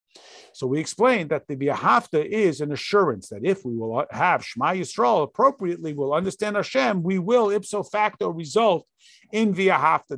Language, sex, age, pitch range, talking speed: English, male, 50-69, 150-205 Hz, 170 wpm